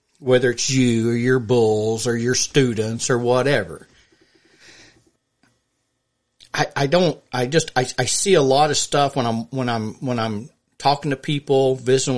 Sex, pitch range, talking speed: male, 120-140 Hz, 165 wpm